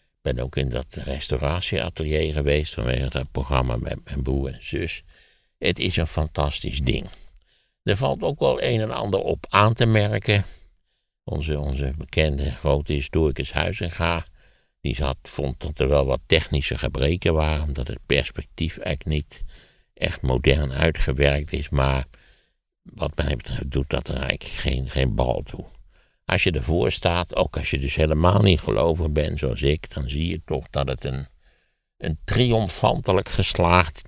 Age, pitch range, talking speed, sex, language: 60-79, 65-80 Hz, 165 wpm, male, Dutch